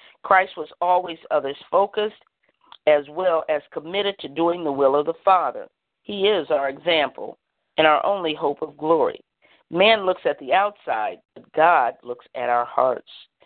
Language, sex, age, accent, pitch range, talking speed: English, female, 50-69, American, 150-200 Hz, 160 wpm